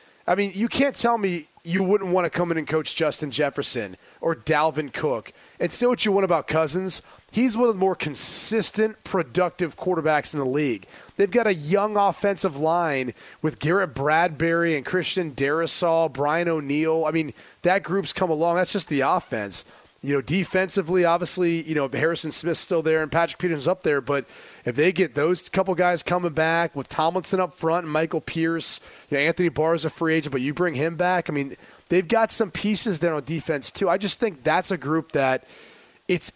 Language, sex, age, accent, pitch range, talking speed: English, male, 30-49, American, 155-190 Hz, 205 wpm